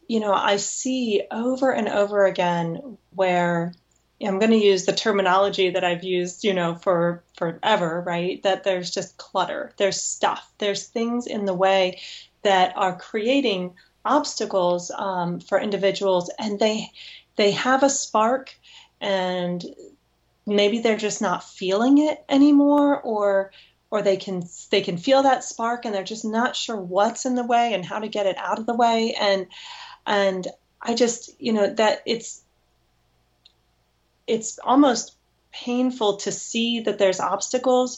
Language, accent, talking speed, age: English, American, 155 wpm, 30-49